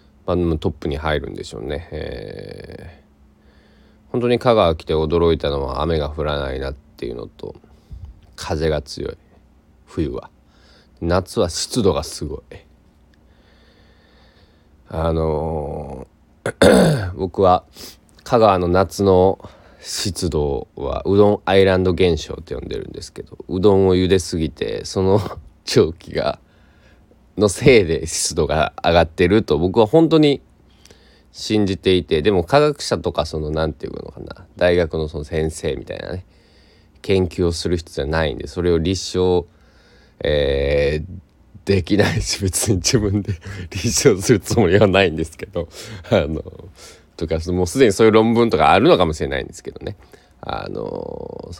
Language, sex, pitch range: Japanese, male, 75-100 Hz